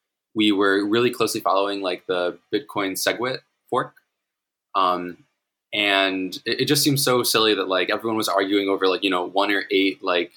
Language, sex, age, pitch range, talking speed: English, male, 20-39, 95-120 Hz, 180 wpm